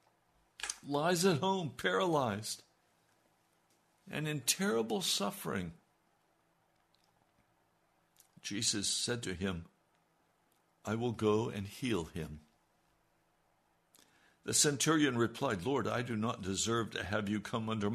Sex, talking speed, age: male, 105 wpm, 60-79